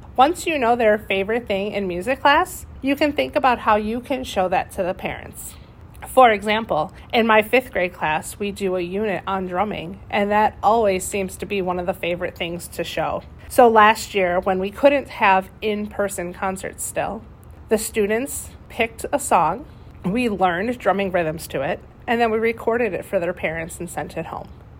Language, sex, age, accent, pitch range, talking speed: English, female, 30-49, American, 190-245 Hz, 195 wpm